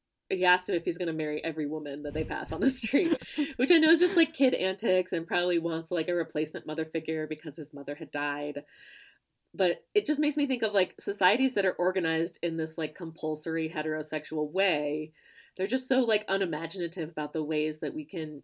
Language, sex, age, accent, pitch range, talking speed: English, female, 30-49, American, 150-185 Hz, 215 wpm